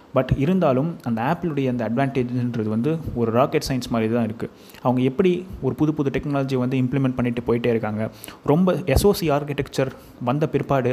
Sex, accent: male, native